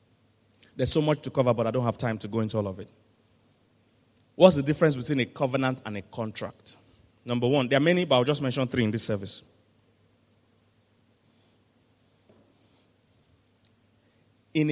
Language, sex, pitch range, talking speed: English, male, 110-135 Hz, 160 wpm